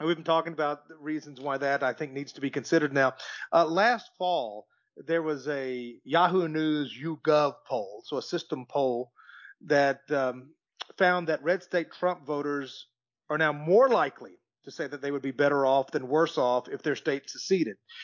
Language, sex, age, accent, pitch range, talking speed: English, male, 40-59, American, 135-180 Hz, 185 wpm